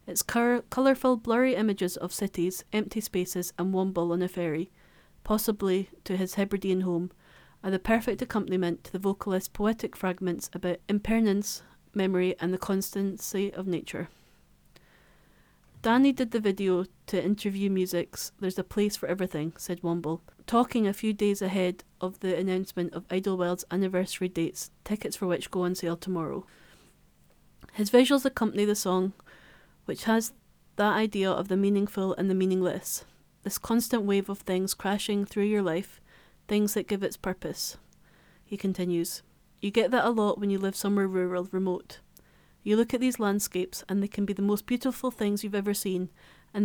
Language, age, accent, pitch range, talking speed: English, 30-49, British, 185-210 Hz, 165 wpm